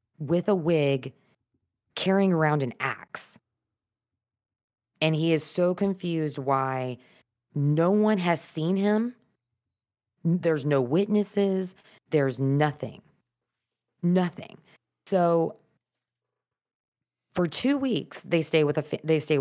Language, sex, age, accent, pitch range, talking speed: English, female, 20-39, American, 130-175 Hz, 110 wpm